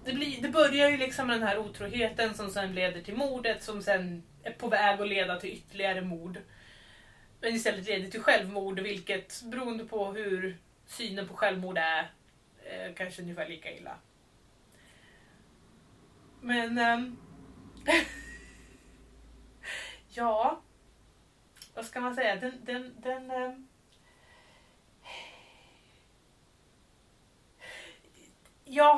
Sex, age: female, 30-49